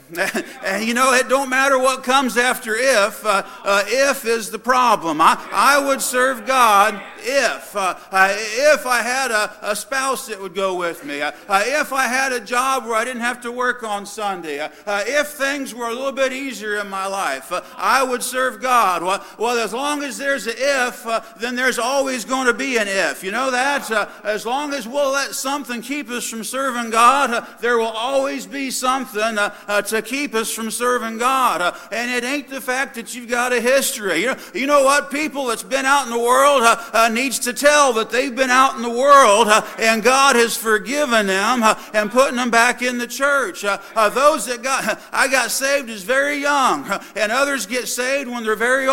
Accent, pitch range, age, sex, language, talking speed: American, 225-275 Hz, 50-69, male, English, 225 wpm